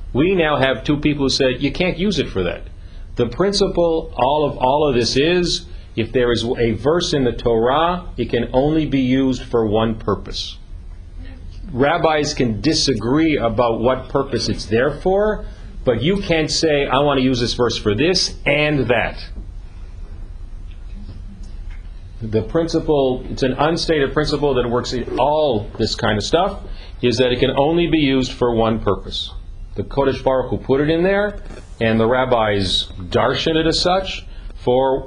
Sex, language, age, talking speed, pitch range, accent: male, English, 40-59, 170 wpm, 100-145 Hz, American